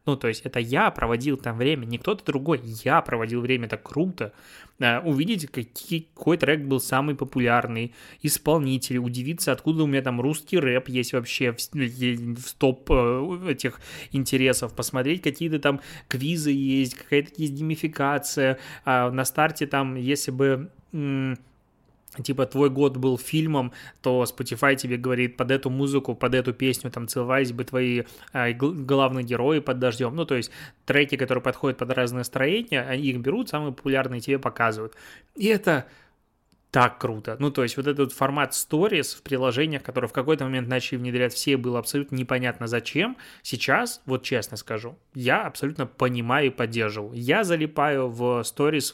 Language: Russian